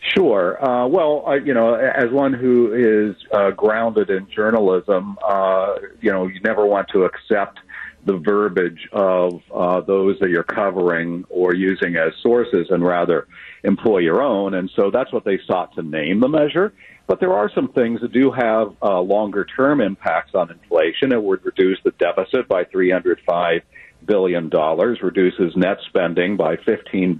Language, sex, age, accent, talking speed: English, male, 50-69, American, 170 wpm